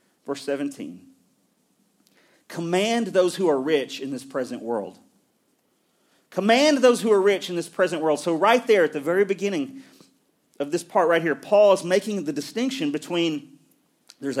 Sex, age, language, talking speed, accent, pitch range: male, 40-59, English, 160 wpm, American, 150-230 Hz